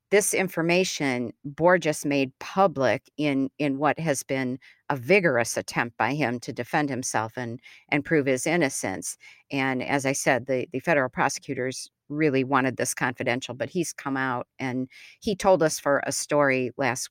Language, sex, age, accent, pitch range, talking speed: English, female, 50-69, American, 130-150 Hz, 165 wpm